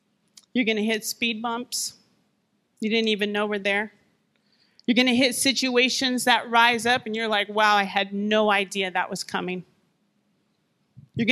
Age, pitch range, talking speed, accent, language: 30-49, 195-235 Hz, 160 wpm, American, English